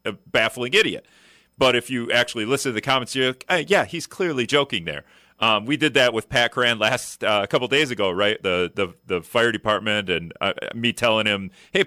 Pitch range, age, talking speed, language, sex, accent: 100-130 Hz, 40-59, 230 wpm, English, male, American